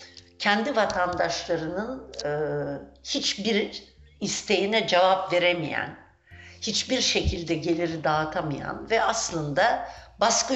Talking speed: 80 wpm